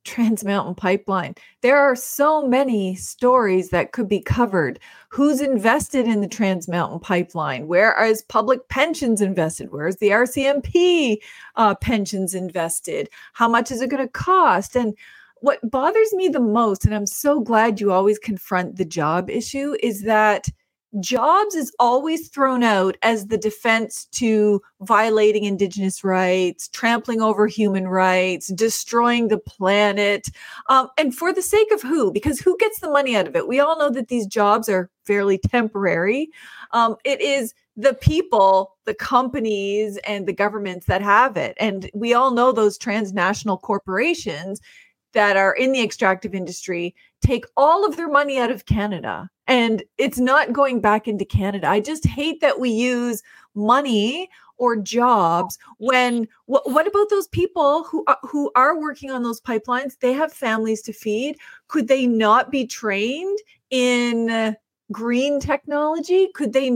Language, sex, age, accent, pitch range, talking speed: English, female, 40-59, American, 205-275 Hz, 160 wpm